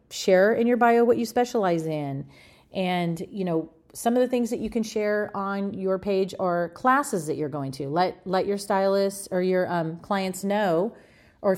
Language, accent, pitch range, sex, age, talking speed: English, American, 165-210 Hz, female, 30-49, 195 wpm